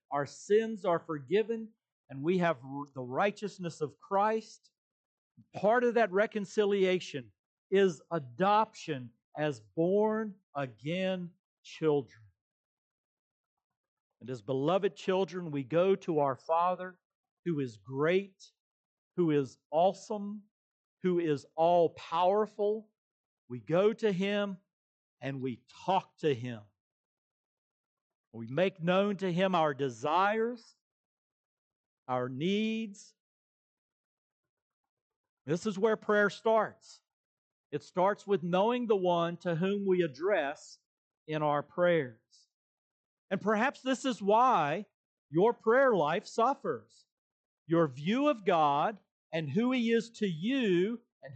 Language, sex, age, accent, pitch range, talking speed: English, male, 50-69, American, 150-210 Hz, 110 wpm